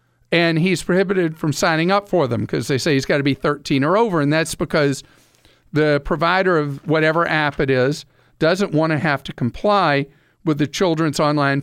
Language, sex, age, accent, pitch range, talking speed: English, male, 50-69, American, 140-175 Hz, 195 wpm